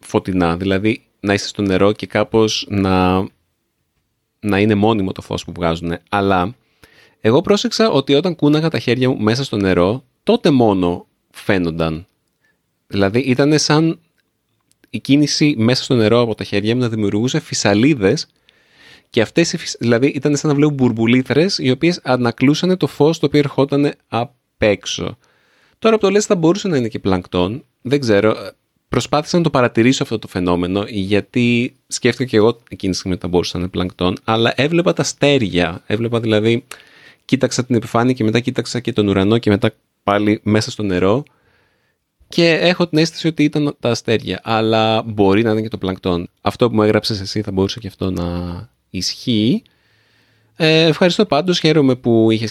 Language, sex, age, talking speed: Greek, male, 30-49, 170 wpm